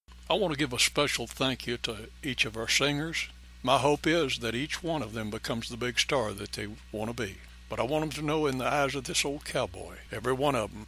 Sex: male